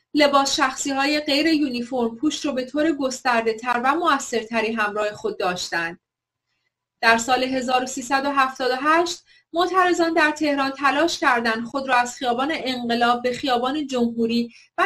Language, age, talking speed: Persian, 30-49, 125 wpm